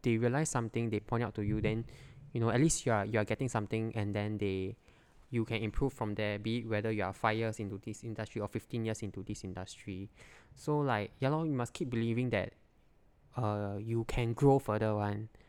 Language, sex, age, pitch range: English, male, 20-39, 105-125 Hz